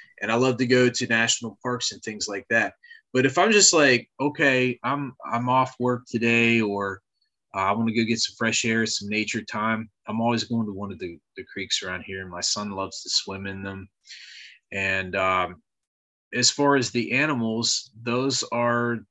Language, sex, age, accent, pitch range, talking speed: English, male, 30-49, American, 100-120 Hz, 200 wpm